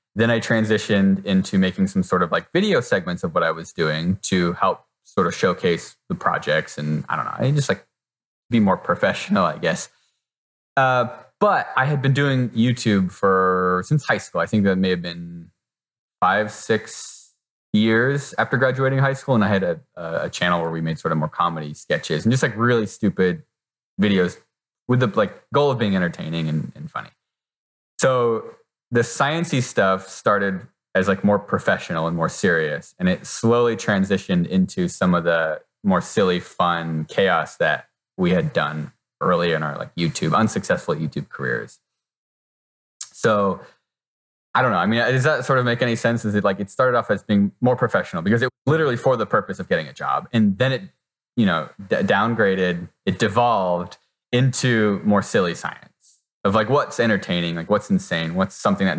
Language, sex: English, male